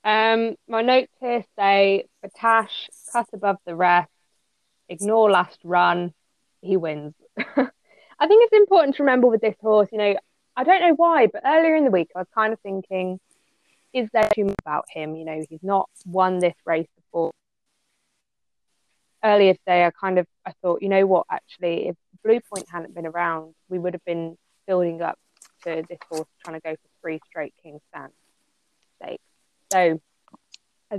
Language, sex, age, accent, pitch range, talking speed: English, female, 20-39, British, 170-210 Hz, 175 wpm